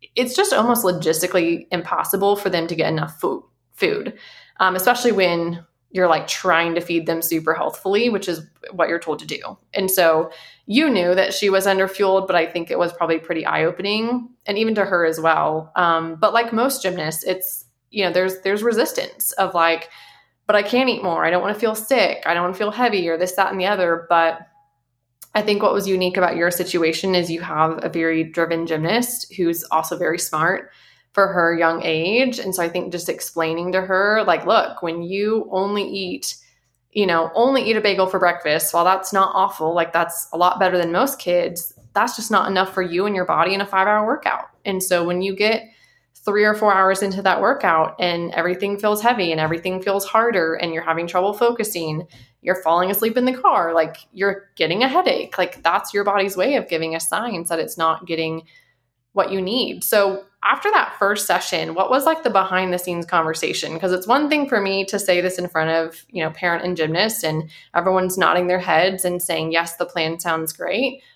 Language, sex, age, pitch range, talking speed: English, female, 20-39, 165-200 Hz, 215 wpm